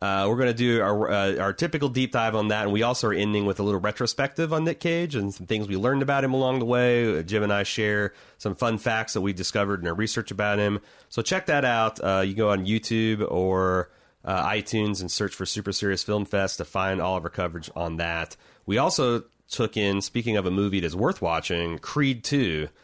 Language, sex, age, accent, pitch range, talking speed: English, male, 30-49, American, 90-110 Hz, 240 wpm